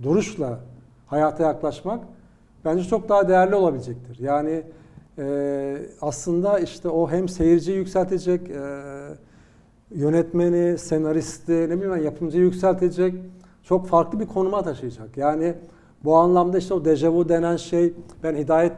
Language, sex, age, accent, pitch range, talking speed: Turkish, male, 60-79, native, 160-185 Hz, 120 wpm